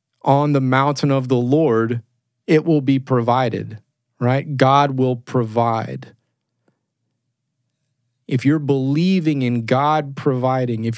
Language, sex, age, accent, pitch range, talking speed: English, male, 30-49, American, 125-155 Hz, 115 wpm